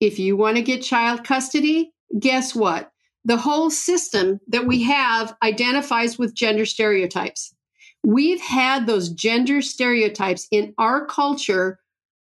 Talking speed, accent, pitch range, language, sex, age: 130 wpm, American, 220-295 Hz, English, female, 50-69